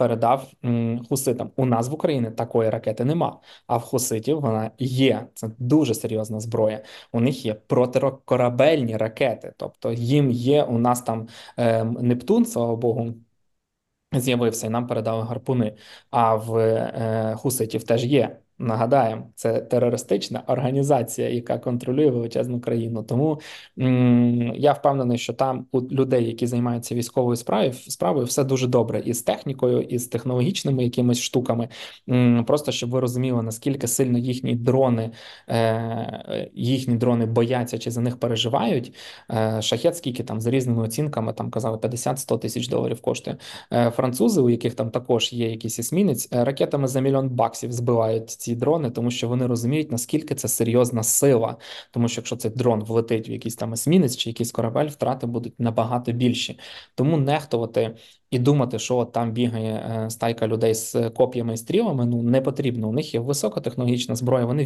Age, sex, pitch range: 20-39, male, 115-130 Hz